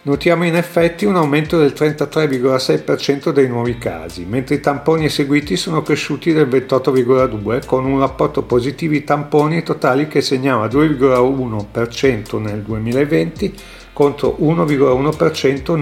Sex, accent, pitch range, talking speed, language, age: male, native, 125-150 Hz, 120 wpm, Italian, 50-69